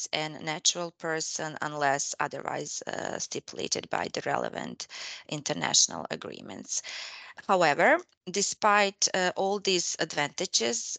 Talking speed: 100 wpm